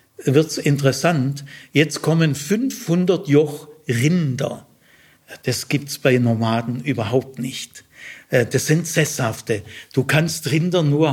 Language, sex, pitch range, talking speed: German, male, 135-165 Hz, 110 wpm